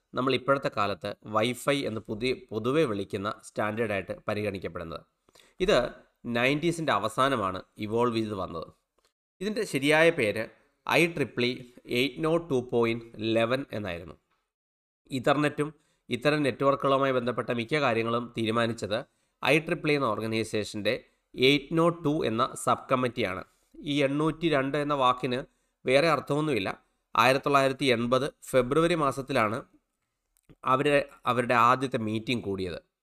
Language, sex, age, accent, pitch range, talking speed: Malayalam, male, 30-49, native, 115-145 Hz, 100 wpm